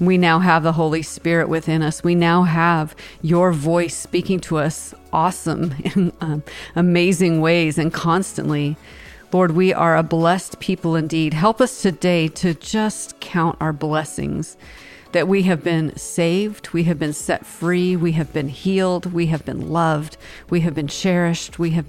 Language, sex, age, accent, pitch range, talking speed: English, female, 40-59, American, 160-185 Hz, 170 wpm